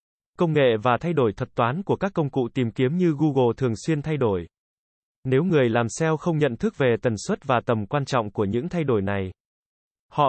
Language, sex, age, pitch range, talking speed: Vietnamese, male, 20-39, 120-155 Hz, 225 wpm